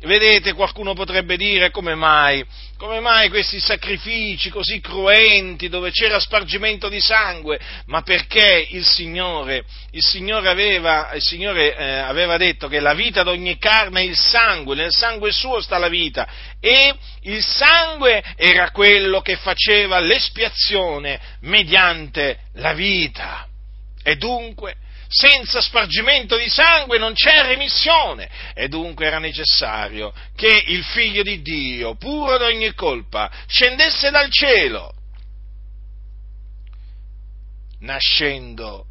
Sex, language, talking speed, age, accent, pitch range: male, Italian, 125 wpm, 50-69, native, 150-215 Hz